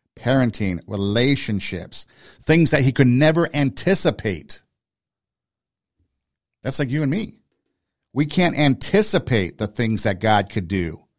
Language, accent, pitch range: English, American, 100-125 Hz